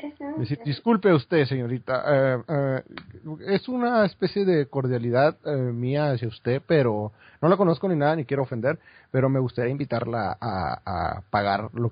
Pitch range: 115-170 Hz